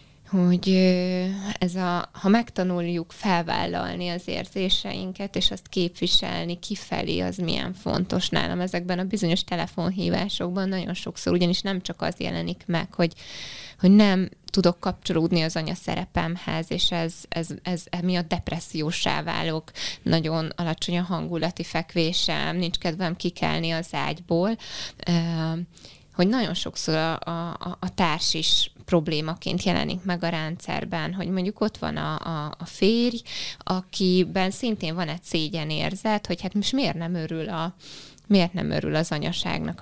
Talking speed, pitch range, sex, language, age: 135 wpm, 165-185 Hz, female, Hungarian, 20-39